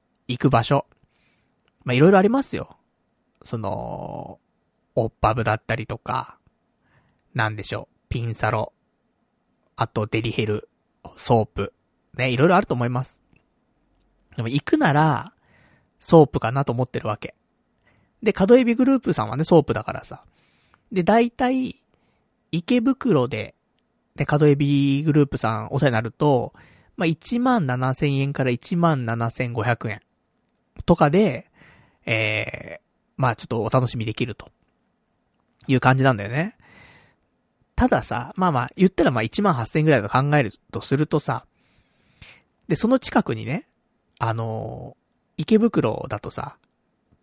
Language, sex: Japanese, male